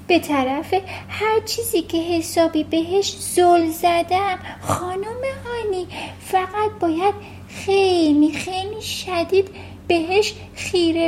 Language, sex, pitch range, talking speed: Persian, female, 235-340 Hz, 95 wpm